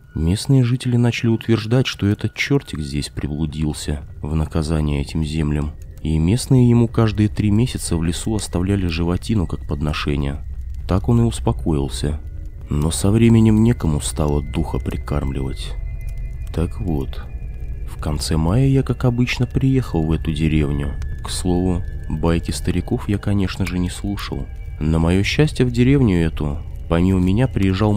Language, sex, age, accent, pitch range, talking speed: Russian, male, 20-39, native, 75-110 Hz, 145 wpm